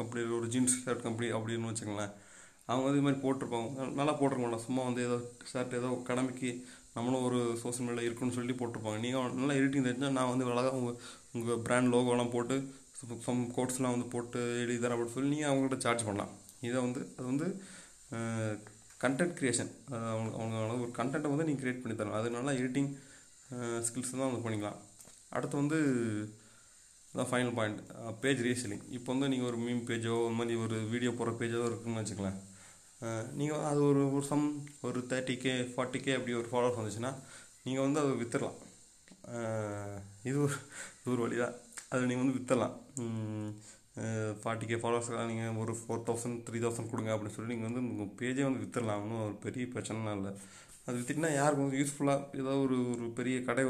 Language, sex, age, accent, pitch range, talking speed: Tamil, male, 30-49, native, 115-130 Hz, 160 wpm